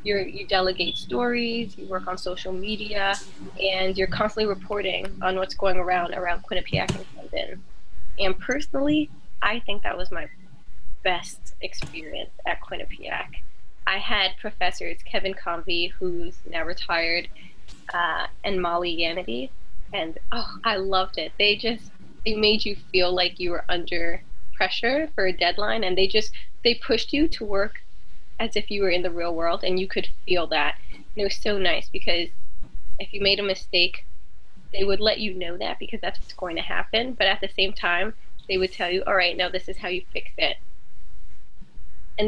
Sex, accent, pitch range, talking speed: female, American, 175-205 Hz, 175 wpm